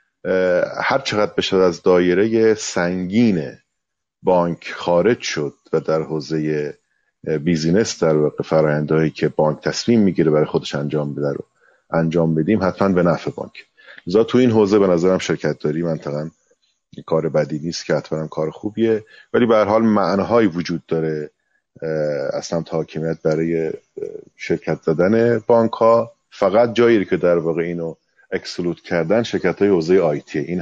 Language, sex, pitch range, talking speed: Persian, male, 80-105 Hz, 145 wpm